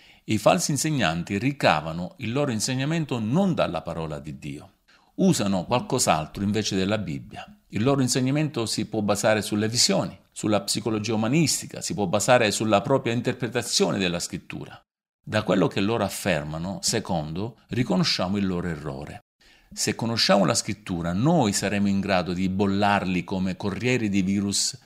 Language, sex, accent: Italian, male, native